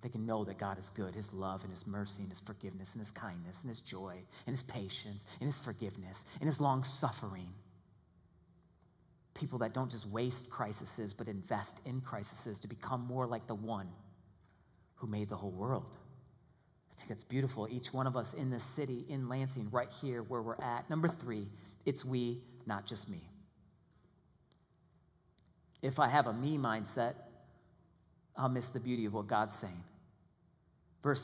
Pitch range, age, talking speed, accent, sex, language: 105-165 Hz, 40-59, 175 wpm, American, male, English